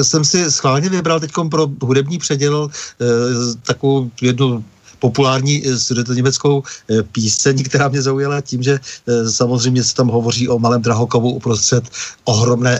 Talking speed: 140 wpm